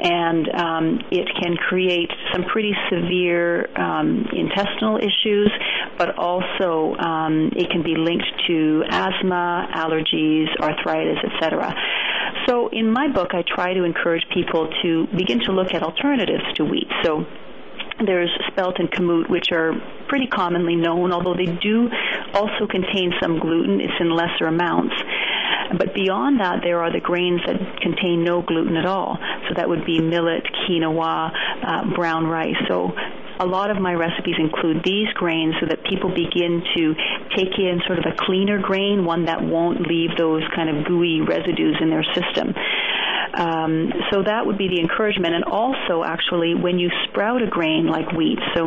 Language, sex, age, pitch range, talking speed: English, female, 40-59, 165-190 Hz, 165 wpm